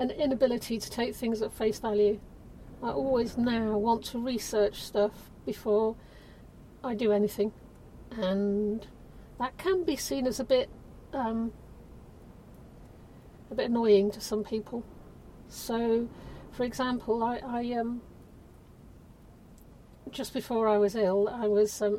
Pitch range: 210-255 Hz